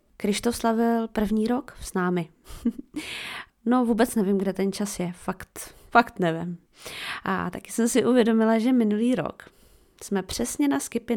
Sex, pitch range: female, 185-240 Hz